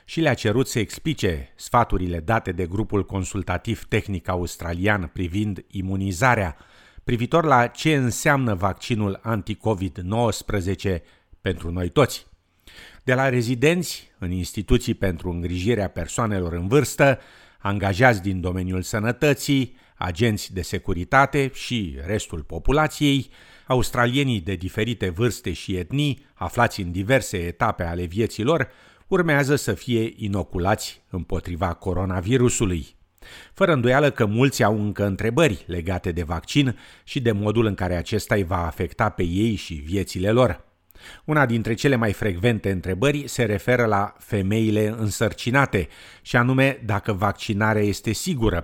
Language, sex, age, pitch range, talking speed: Romanian, male, 50-69, 90-120 Hz, 125 wpm